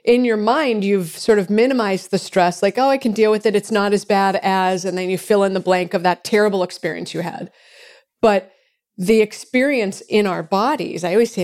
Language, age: English, 40-59